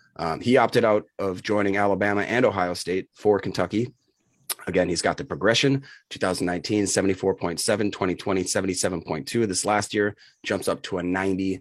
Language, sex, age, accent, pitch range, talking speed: English, male, 30-49, American, 90-110 Hz, 145 wpm